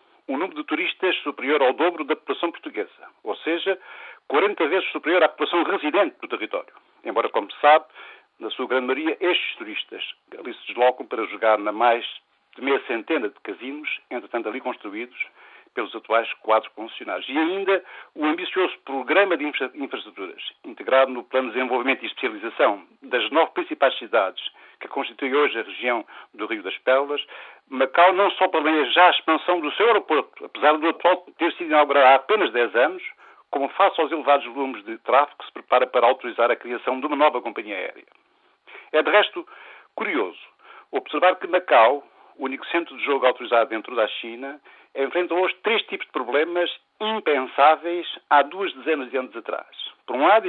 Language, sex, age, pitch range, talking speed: Portuguese, male, 60-79, 135-185 Hz, 175 wpm